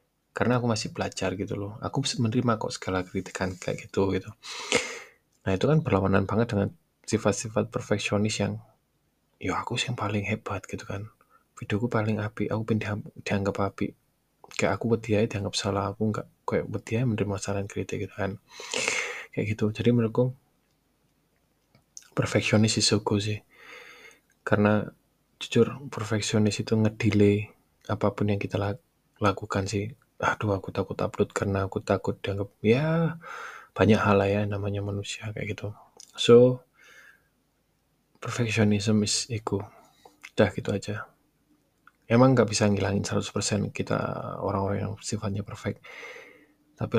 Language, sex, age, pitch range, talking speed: Indonesian, male, 20-39, 100-115 Hz, 135 wpm